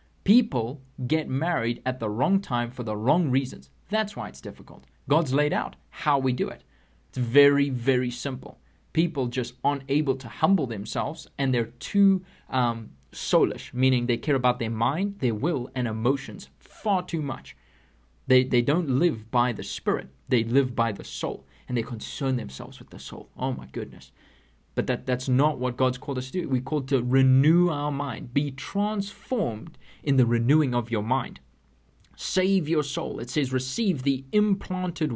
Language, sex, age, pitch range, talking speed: English, male, 20-39, 120-150 Hz, 180 wpm